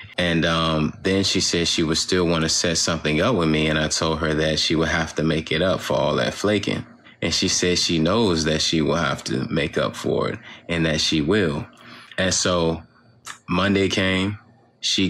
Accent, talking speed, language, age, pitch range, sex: American, 215 wpm, English, 20-39, 80-95 Hz, male